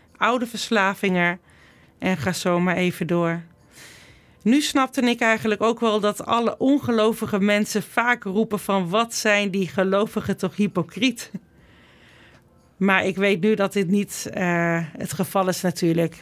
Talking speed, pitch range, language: 145 wpm, 180-215 Hz, Dutch